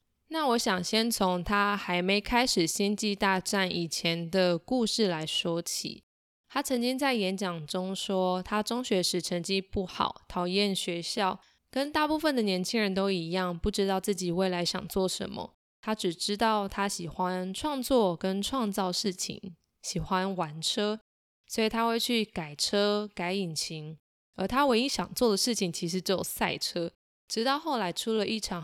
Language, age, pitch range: Chinese, 20-39, 180-225 Hz